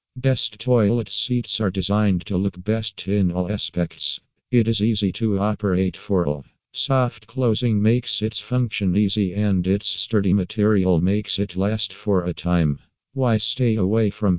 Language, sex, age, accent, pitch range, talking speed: English, male, 50-69, American, 95-110 Hz, 160 wpm